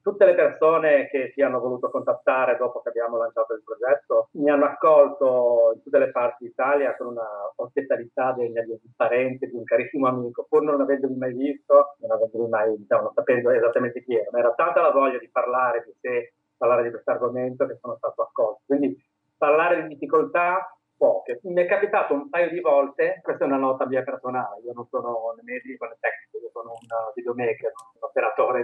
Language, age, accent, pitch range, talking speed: Italian, 40-59, native, 125-195 Hz, 195 wpm